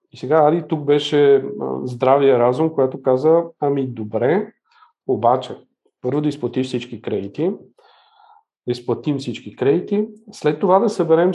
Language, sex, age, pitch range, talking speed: Bulgarian, male, 50-69, 135-170 Hz, 125 wpm